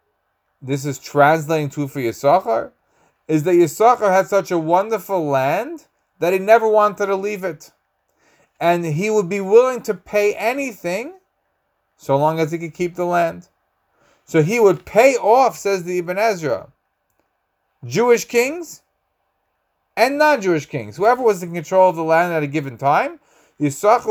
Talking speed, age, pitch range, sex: 155 wpm, 30-49, 145-195 Hz, male